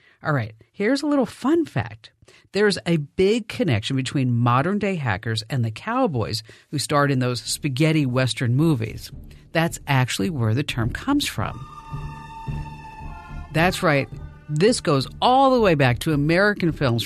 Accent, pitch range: American, 120-175 Hz